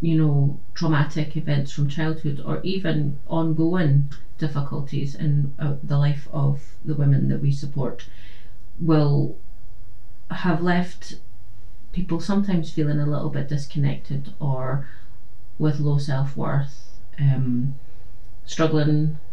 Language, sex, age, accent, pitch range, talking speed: English, female, 30-49, British, 115-155 Hz, 110 wpm